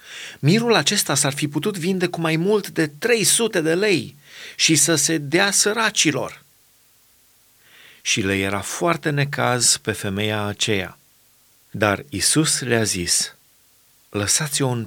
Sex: male